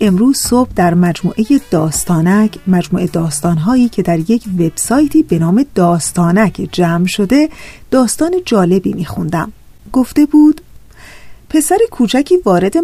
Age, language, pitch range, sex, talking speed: 40-59, Persian, 175-280 Hz, female, 110 wpm